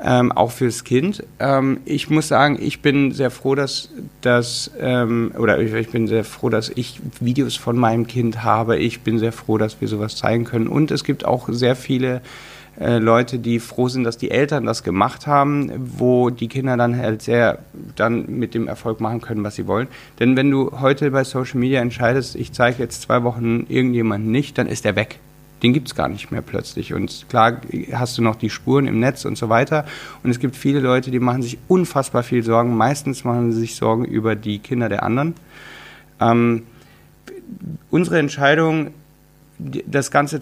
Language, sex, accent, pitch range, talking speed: German, male, German, 115-140 Hz, 195 wpm